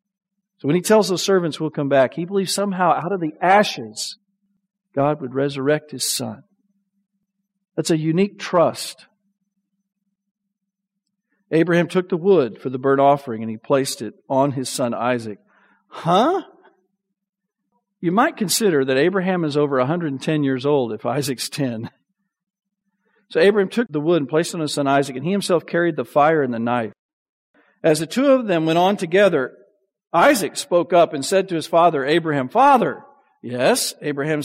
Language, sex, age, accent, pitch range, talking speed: English, male, 50-69, American, 155-210 Hz, 170 wpm